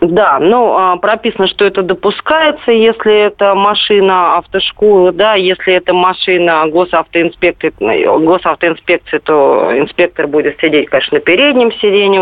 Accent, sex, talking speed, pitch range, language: native, female, 125 wpm, 170-205 Hz, Russian